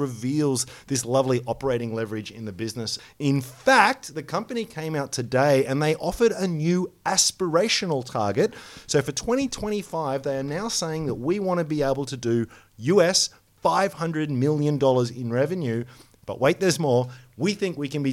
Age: 30-49